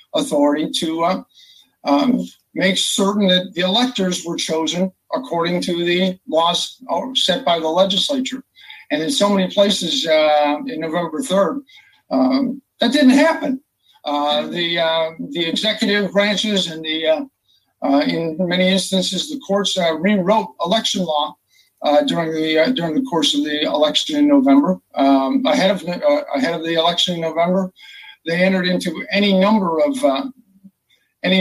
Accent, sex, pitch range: American, male, 175-260 Hz